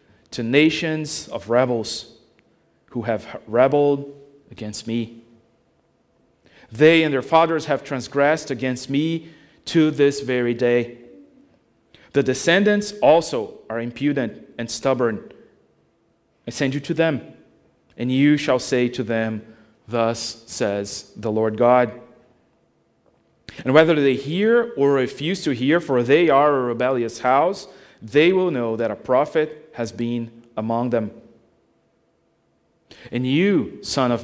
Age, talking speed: 30-49, 125 wpm